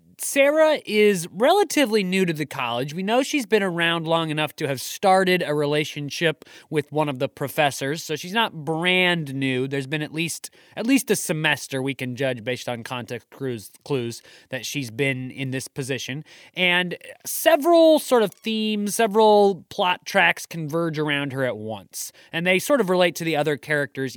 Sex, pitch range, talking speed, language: male, 140-185 Hz, 180 wpm, English